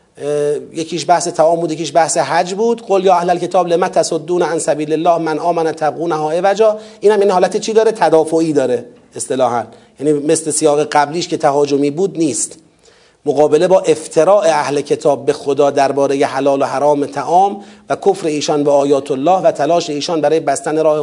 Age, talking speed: 40-59, 175 wpm